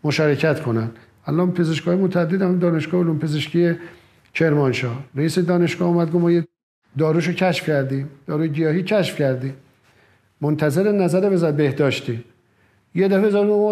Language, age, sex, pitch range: Persian, 50-69, male, 140-190 Hz